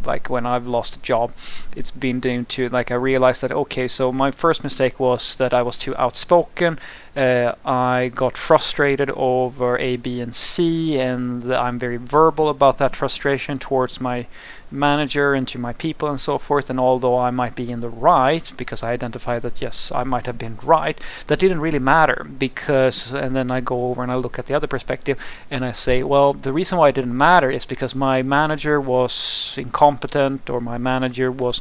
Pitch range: 125-140 Hz